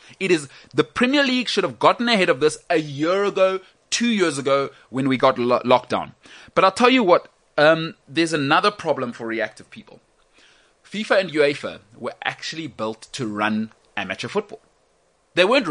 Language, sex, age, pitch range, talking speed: English, male, 30-49, 135-205 Hz, 180 wpm